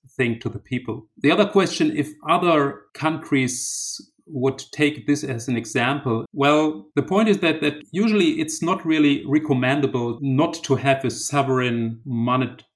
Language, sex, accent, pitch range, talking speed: English, male, German, 120-145 Hz, 155 wpm